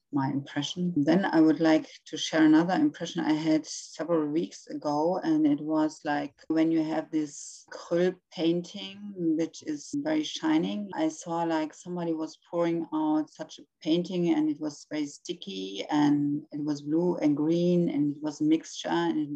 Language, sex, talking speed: English, female, 175 wpm